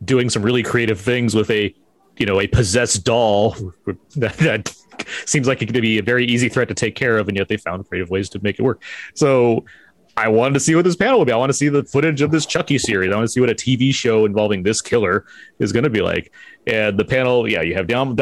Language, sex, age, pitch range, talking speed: English, male, 30-49, 95-130 Hz, 260 wpm